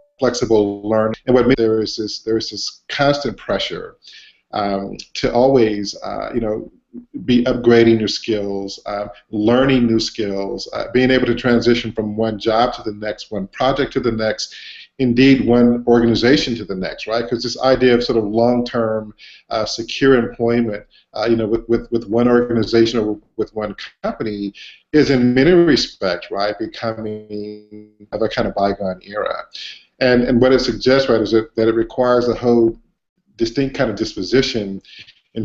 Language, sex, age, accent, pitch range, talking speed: English, male, 50-69, American, 105-120 Hz, 170 wpm